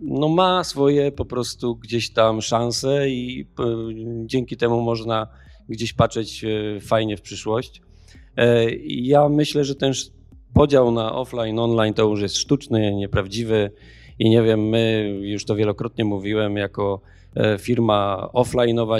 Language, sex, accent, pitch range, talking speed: Polish, male, native, 105-130 Hz, 130 wpm